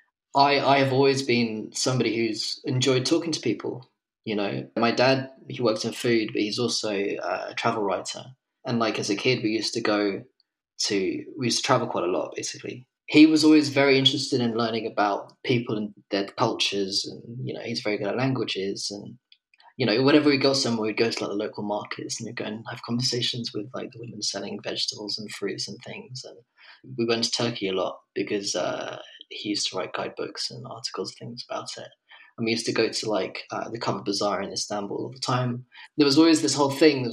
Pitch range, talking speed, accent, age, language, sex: 110-135 Hz, 215 wpm, British, 20-39, English, male